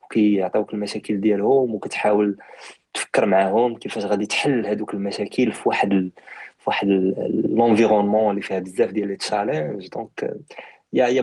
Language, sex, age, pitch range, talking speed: Arabic, male, 20-39, 100-110 Hz, 135 wpm